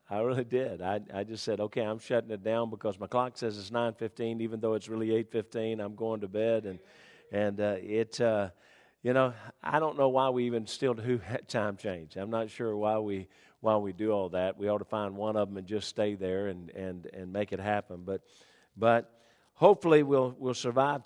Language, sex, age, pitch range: English, male, 50-69, 105-130 Hz